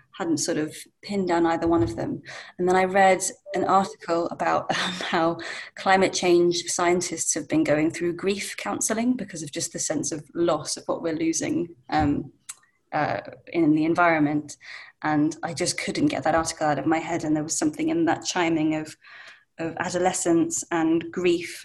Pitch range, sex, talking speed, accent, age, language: 165-185 Hz, female, 185 wpm, British, 20-39, English